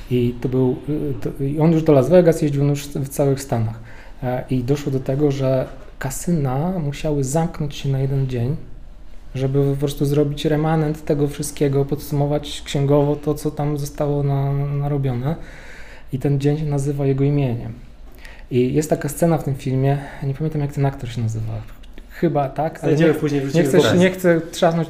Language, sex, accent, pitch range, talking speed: Polish, male, native, 125-145 Hz, 170 wpm